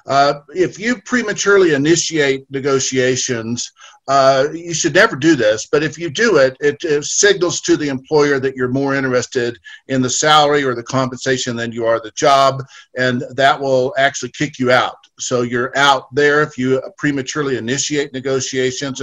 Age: 50-69